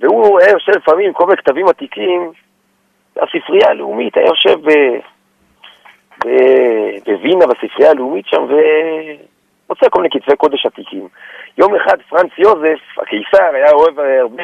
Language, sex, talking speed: Hebrew, male, 125 wpm